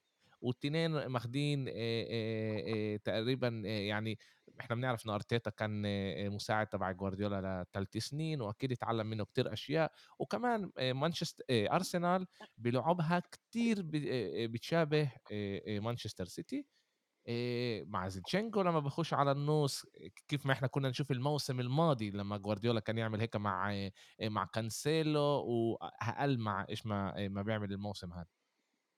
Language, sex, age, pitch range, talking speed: Arabic, male, 20-39, 110-165 Hz, 115 wpm